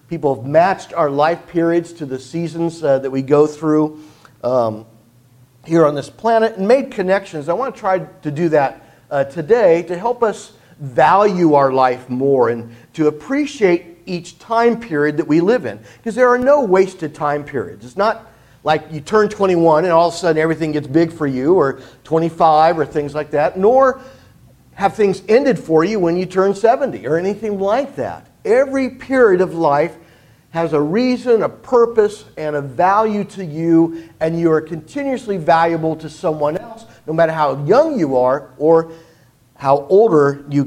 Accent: American